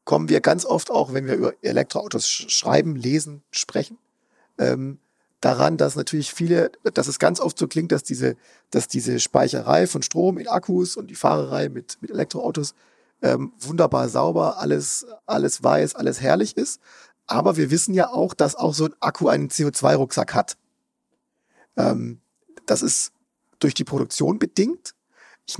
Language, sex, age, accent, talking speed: German, male, 40-59, German, 160 wpm